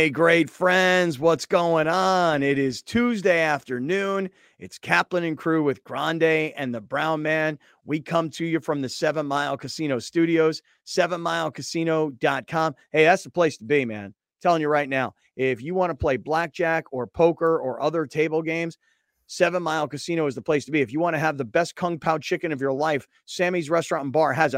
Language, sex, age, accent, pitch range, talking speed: English, male, 40-59, American, 130-165 Hz, 195 wpm